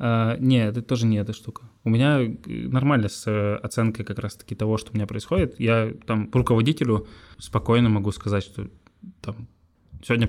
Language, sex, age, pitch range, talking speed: Russian, male, 20-39, 105-115 Hz, 170 wpm